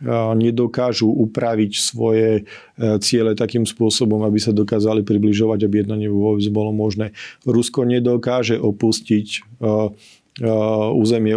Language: Slovak